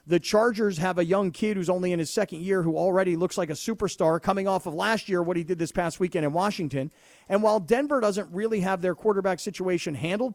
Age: 40-59